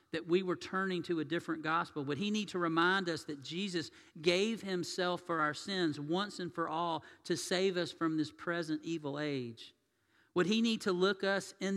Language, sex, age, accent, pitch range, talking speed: English, male, 50-69, American, 150-195 Hz, 205 wpm